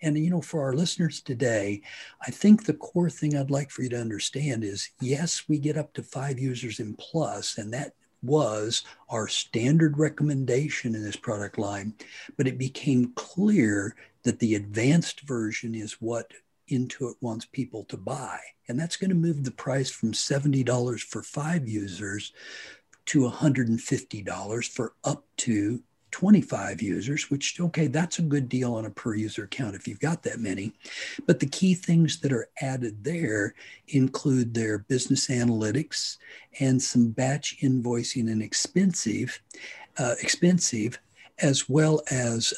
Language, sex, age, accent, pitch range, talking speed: English, male, 60-79, American, 115-150 Hz, 155 wpm